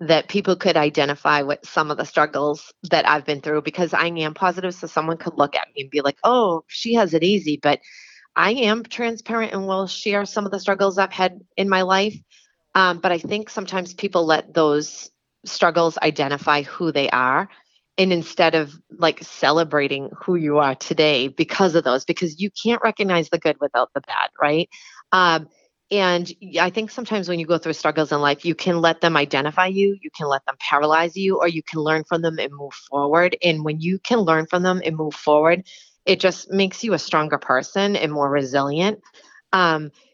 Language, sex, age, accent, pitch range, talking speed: English, female, 30-49, American, 150-190 Hz, 205 wpm